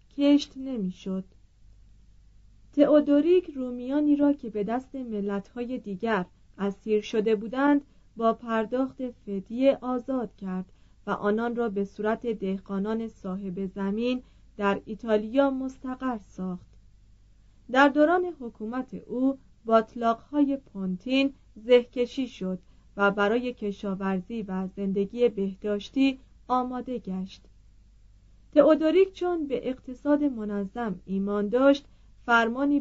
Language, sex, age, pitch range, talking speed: Persian, female, 40-59, 195-265 Hz, 100 wpm